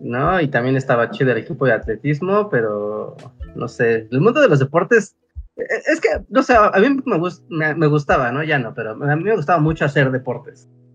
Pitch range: 125-170 Hz